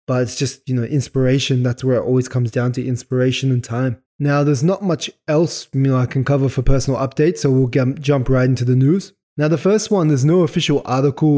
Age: 20-39